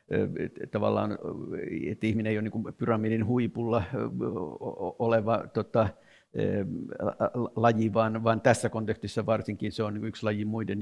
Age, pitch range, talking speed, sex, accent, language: 60-79, 105-115 Hz, 115 wpm, male, native, Finnish